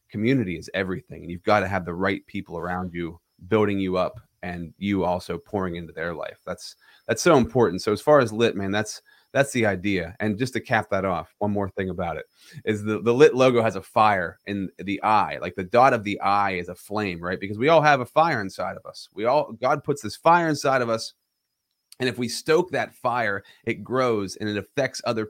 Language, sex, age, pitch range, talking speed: English, male, 30-49, 95-115 Hz, 235 wpm